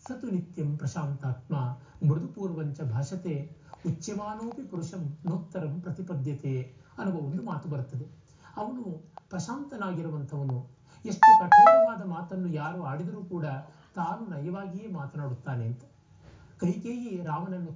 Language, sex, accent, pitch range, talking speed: Kannada, male, native, 145-185 Hz, 90 wpm